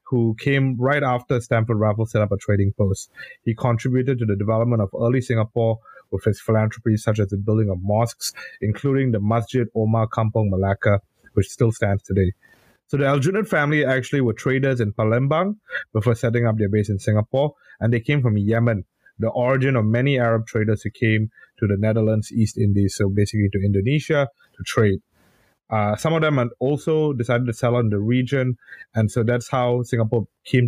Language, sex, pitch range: English, male, 105-130 Hz